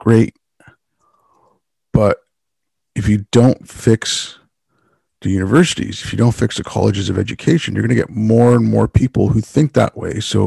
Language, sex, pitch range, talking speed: English, male, 105-125 Hz, 165 wpm